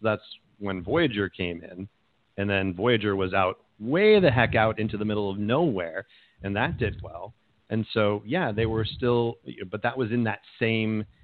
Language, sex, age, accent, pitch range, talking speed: English, male, 40-59, American, 100-120 Hz, 185 wpm